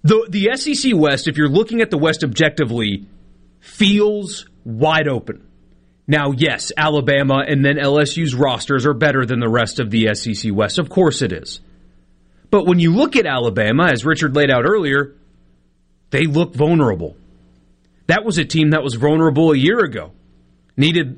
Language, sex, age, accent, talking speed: English, male, 30-49, American, 165 wpm